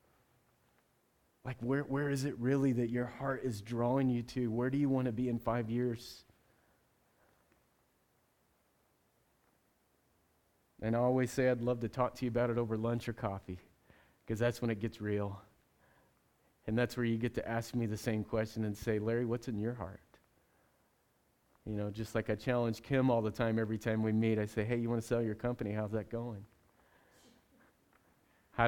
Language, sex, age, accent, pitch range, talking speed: English, male, 30-49, American, 105-125 Hz, 185 wpm